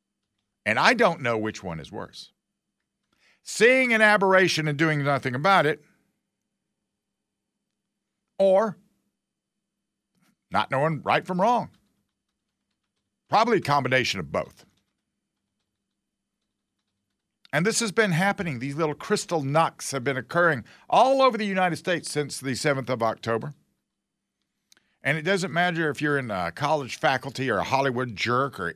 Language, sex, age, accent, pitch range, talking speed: English, male, 50-69, American, 115-180 Hz, 135 wpm